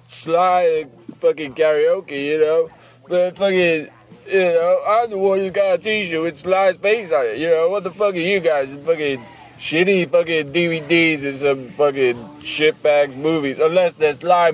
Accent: American